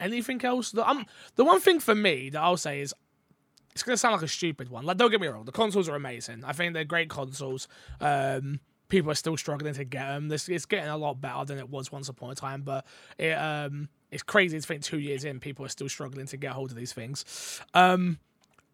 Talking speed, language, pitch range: 245 wpm, English, 145-210 Hz